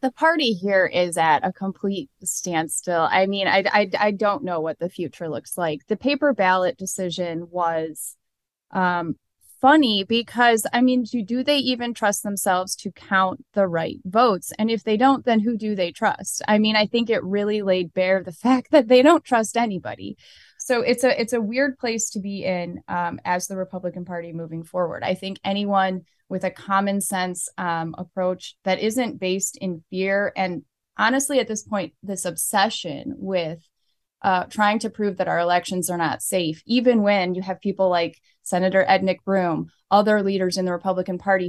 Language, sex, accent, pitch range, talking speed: English, female, American, 180-230 Hz, 185 wpm